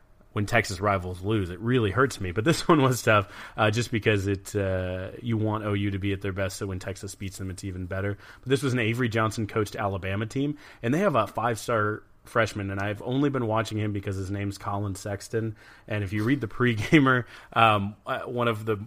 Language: English